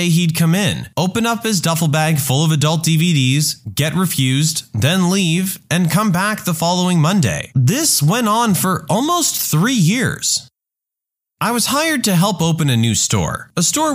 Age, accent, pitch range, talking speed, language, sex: 30-49, American, 130-195 Hz, 170 wpm, English, male